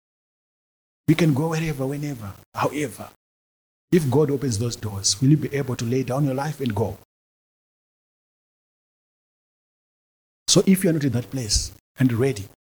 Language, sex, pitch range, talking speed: English, male, 105-140 Hz, 150 wpm